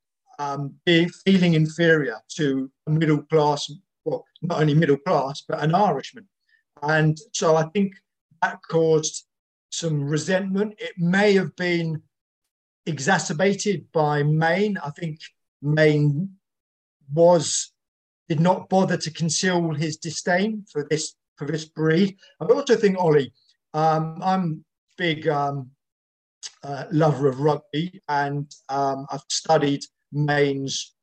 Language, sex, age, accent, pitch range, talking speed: English, male, 50-69, British, 145-180 Hz, 125 wpm